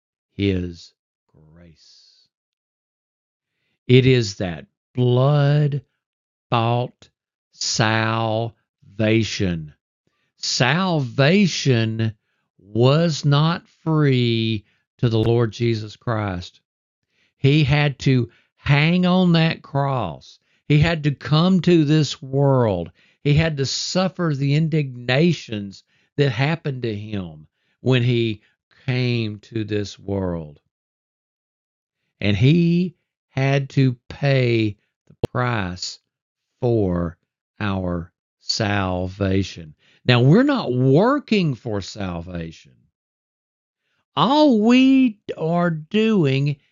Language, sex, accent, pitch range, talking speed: English, male, American, 100-150 Hz, 85 wpm